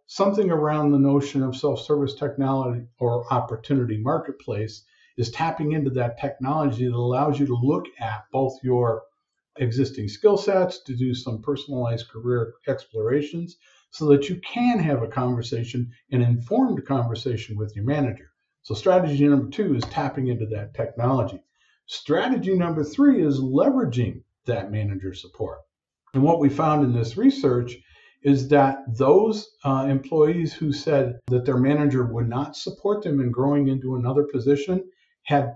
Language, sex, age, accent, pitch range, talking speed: English, male, 50-69, American, 120-155 Hz, 150 wpm